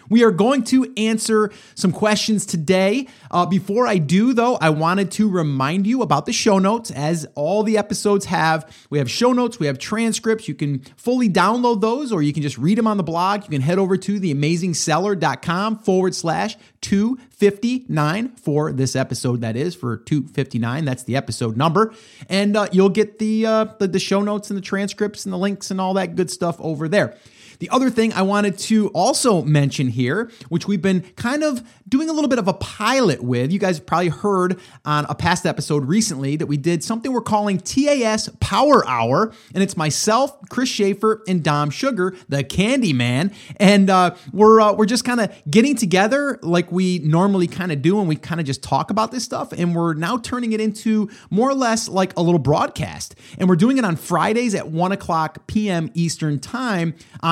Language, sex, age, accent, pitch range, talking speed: English, male, 30-49, American, 160-220 Hz, 200 wpm